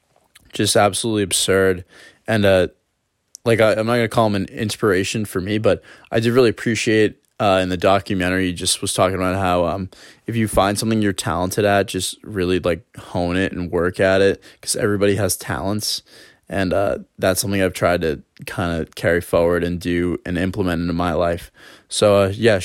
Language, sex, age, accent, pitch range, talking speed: English, male, 20-39, American, 95-110 Hz, 195 wpm